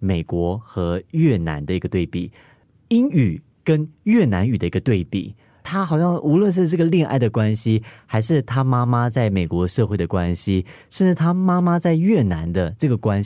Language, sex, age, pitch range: Chinese, male, 30-49, 95-130 Hz